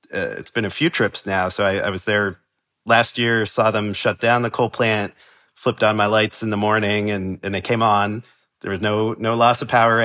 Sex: male